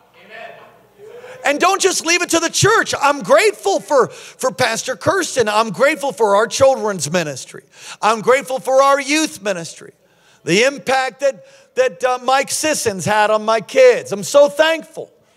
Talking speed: 155 wpm